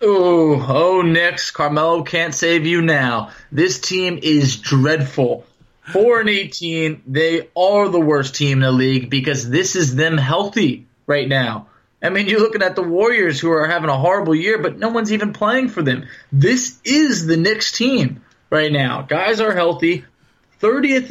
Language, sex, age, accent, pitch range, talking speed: English, male, 20-39, American, 130-170 Hz, 175 wpm